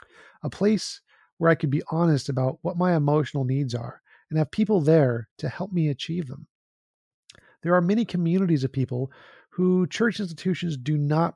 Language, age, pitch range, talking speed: English, 40-59, 130-175 Hz, 175 wpm